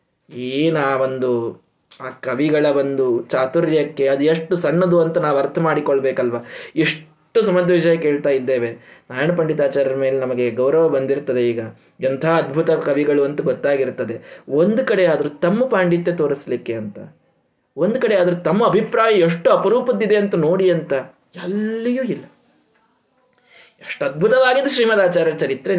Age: 20-39